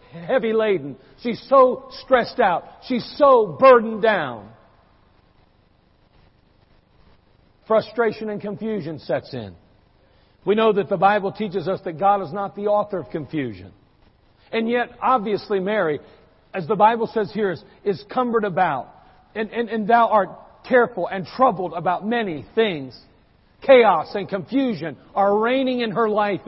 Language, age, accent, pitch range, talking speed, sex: English, 50-69, American, 155-225 Hz, 140 wpm, male